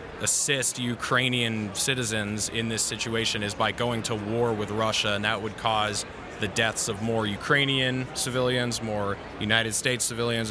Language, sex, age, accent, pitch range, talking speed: English, male, 20-39, American, 110-125 Hz, 155 wpm